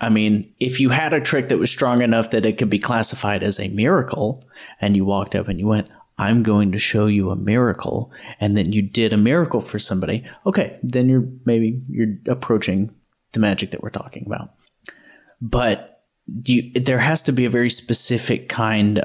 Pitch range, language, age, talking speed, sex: 100-125 Hz, English, 30-49, 200 wpm, male